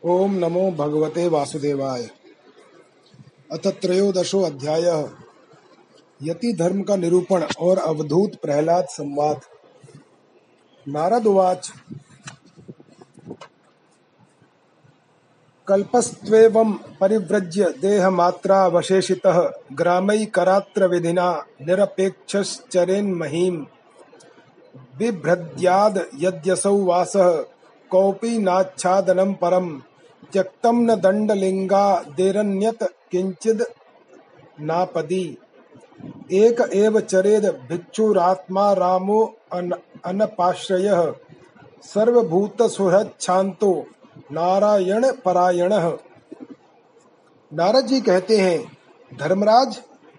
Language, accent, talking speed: Hindi, native, 45 wpm